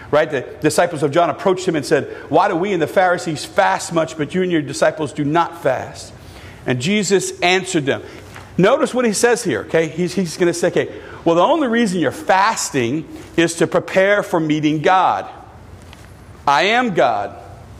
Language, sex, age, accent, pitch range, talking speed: English, male, 50-69, American, 155-220 Hz, 190 wpm